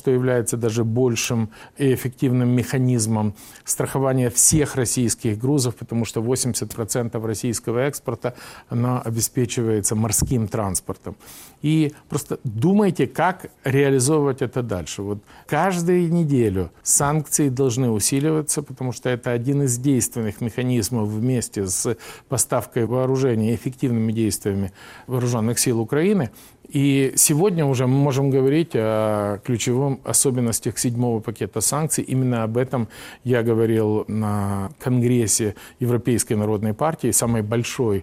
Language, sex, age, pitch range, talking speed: Russian, male, 50-69, 110-140 Hz, 115 wpm